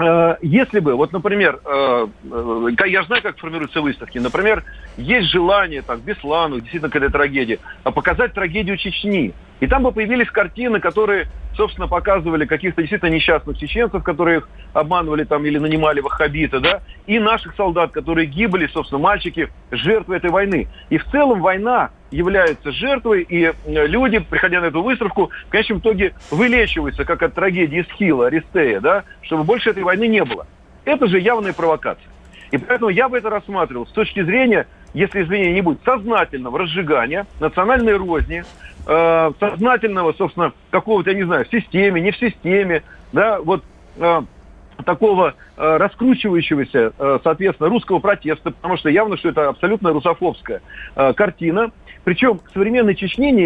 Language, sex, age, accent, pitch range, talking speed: Russian, male, 40-59, native, 160-215 Hz, 150 wpm